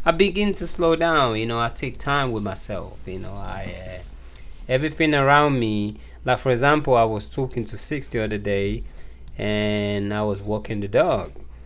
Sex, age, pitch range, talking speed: male, 20-39, 105-140 Hz, 185 wpm